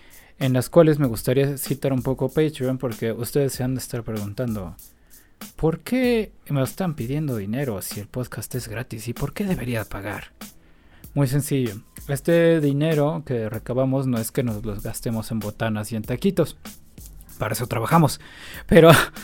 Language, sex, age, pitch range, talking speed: Spanish, male, 20-39, 115-145 Hz, 165 wpm